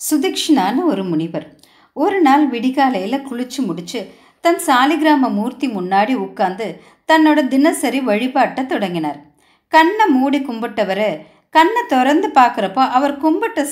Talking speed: 110 wpm